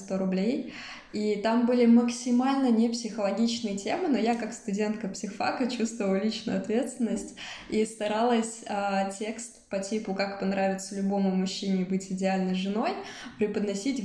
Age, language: 20-39, Russian